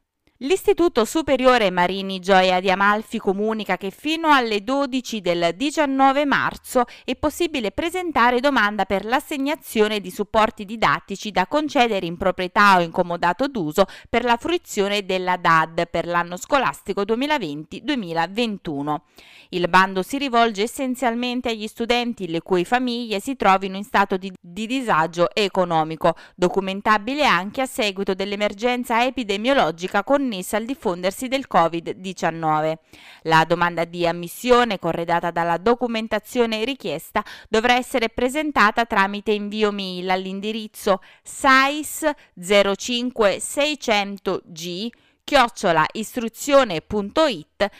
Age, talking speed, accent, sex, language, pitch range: 20-39, 110 wpm, native, female, Italian, 185-255 Hz